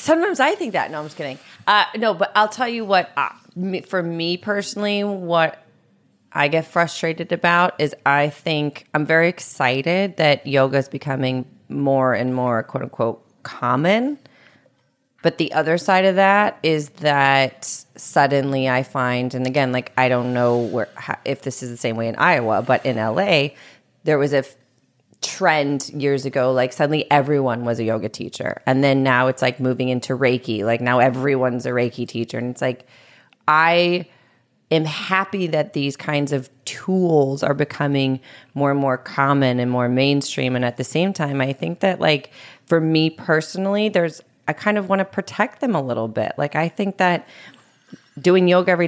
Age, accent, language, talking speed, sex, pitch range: 30-49, American, English, 180 wpm, female, 130-170 Hz